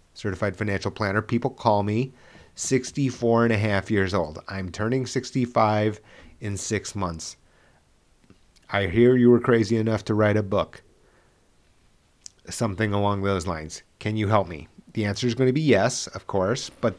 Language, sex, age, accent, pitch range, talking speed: English, male, 30-49, American, 95-120 Hz, 165 wpm